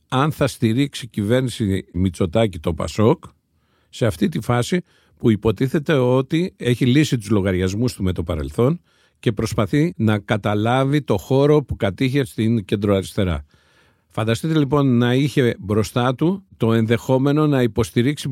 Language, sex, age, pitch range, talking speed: Greek, male, 50-69, 105-145 Hz, 140 wpm